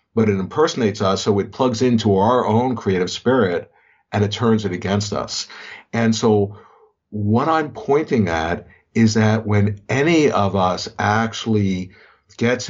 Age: 50-69